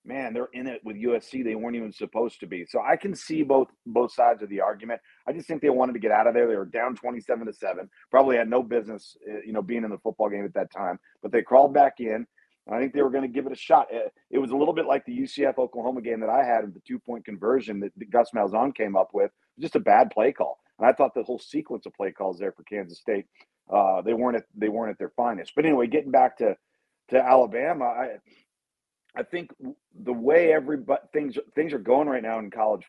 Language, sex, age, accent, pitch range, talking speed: English, male, 40-59, American, 110-155 Hz, 255 wpm